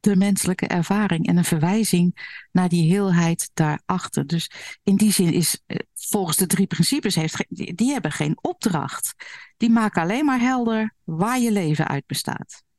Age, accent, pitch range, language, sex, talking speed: 60-79, Dutch, 155-200 Hz, Dutch, female, 160 wpm